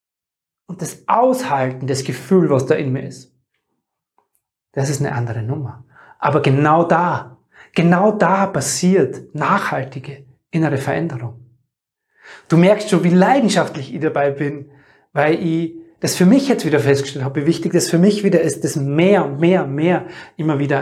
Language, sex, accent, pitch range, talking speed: German, male, German, 140-190 Hz, 160 wpm